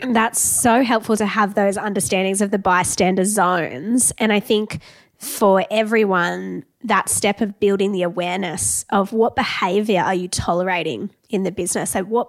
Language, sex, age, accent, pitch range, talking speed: English, female, 20-39, Australian, 185-225 Hz, 155 wpm